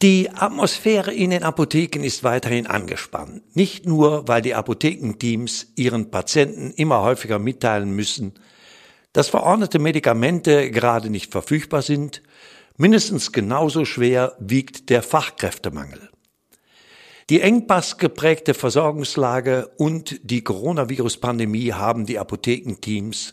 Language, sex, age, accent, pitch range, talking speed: German, male, 60-79, German, 110-155 Hz, 105 wpm